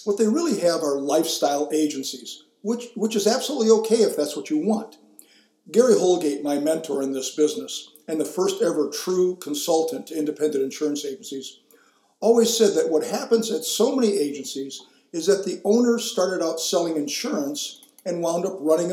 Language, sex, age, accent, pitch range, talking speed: English, male, 50-69, American, 155-225 Hz, 175 wpm